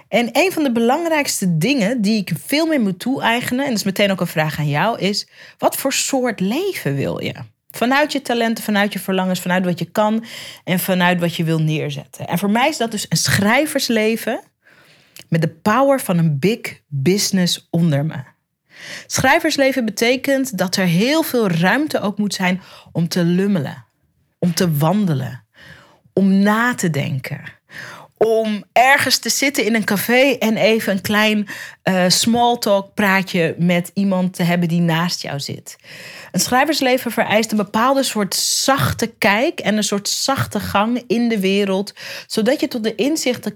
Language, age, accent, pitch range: Dutch, 40-59, Dutch, 170-235 Hz